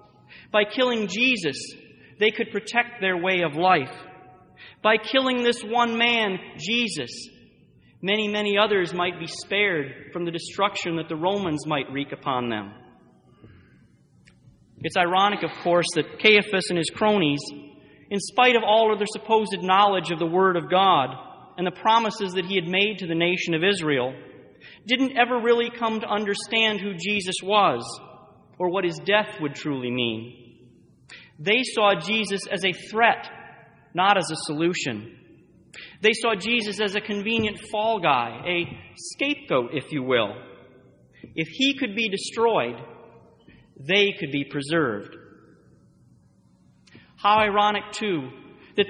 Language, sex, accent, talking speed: English, male, American, 145 wpm